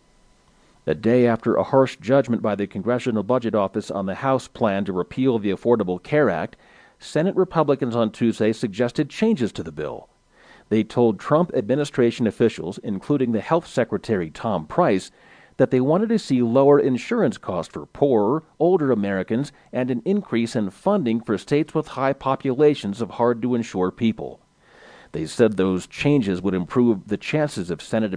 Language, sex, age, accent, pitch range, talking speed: English, male, 40-59, American, 105-140 Hz, 160 wpm